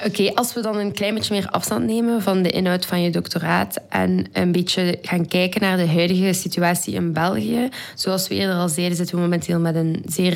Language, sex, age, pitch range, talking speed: Dutch, female, 20-39, 170-190 Hz, 220 wpm